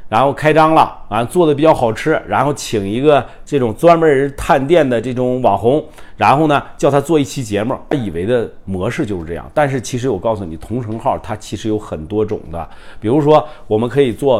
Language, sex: Chinese, male